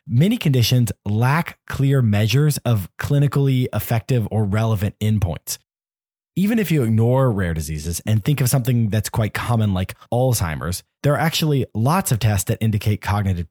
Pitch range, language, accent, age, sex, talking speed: 105-140 Hz, English, American, 20-39, male, 155 wpm